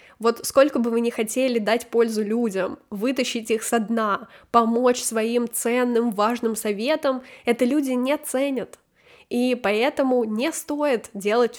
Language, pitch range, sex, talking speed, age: Russian, 220-260 Hz, female, 140 wpm, 10-29